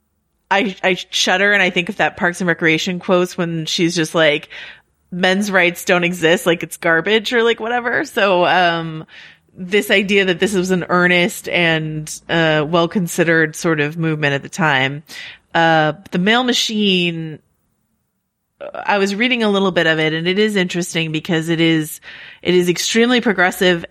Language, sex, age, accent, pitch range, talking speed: English, female, 30-49, American, 160-195 Hz, 170 wpm